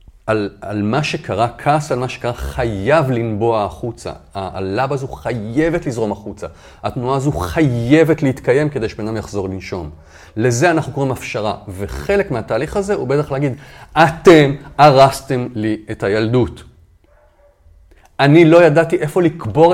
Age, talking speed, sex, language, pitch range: 40-59, 135 wpm, male, Hebrew, 105-150 Hz